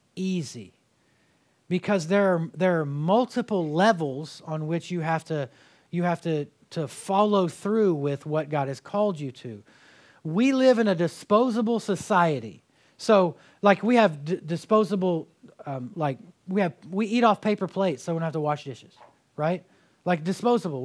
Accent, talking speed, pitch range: American, 165 wpm, 160-225 Hz